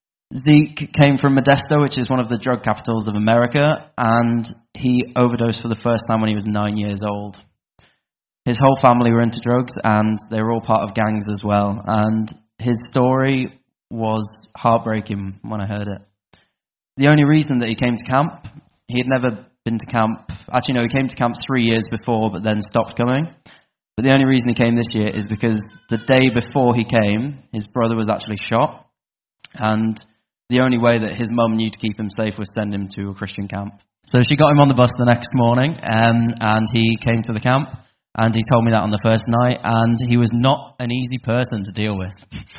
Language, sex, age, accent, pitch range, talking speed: English, male, 10-29, British, 110-130 Hz, 215 wpm